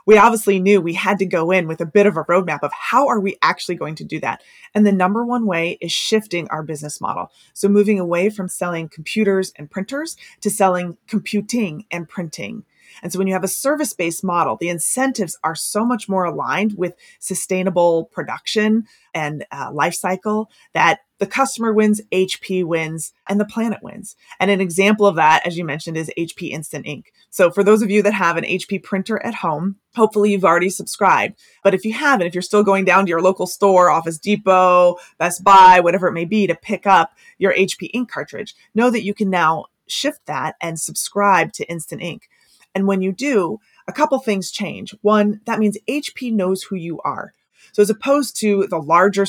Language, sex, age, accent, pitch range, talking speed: English, female, 20-39, American, 175-210 Hz, 205 wpm